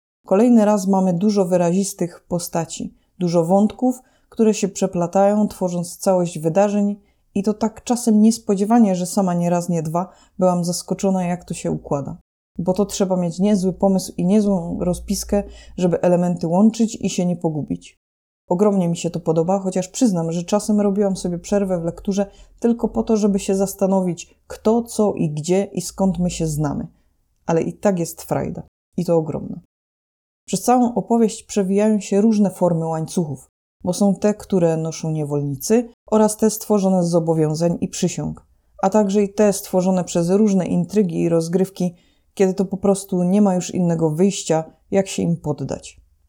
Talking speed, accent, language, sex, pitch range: 165 wpm, native, Polish, female, 170-205 Hz